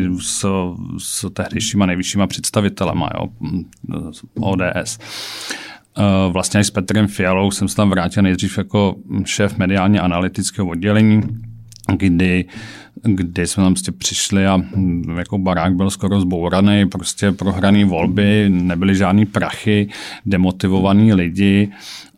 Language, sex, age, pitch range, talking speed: Czech, male, 40-59, 95-105 Hz, 105 wpm